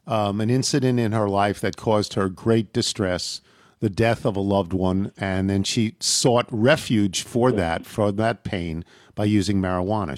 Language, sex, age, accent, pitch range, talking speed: English, male, 50-69, American, 115-150 Hz, 175 wpm